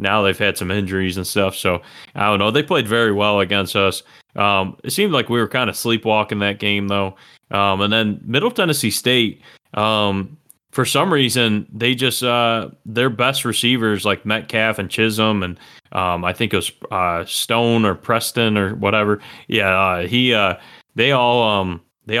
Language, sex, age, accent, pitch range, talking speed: English, male, 20-39, American, 95-115 Hz, 185 wpm